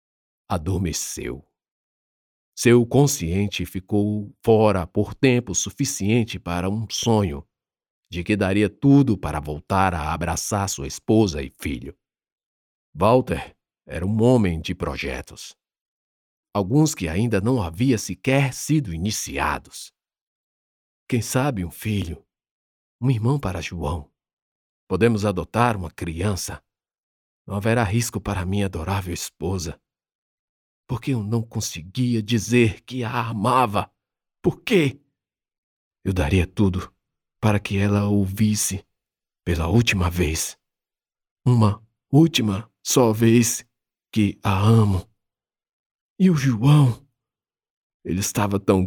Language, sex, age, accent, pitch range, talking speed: Portuguese, male, 50-69, Brazilian, 90-115 Hz, 110 wpm